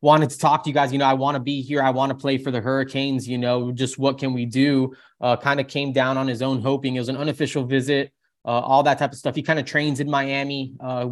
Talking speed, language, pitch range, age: 290 wpm, English, 130-140 Hz, 20-39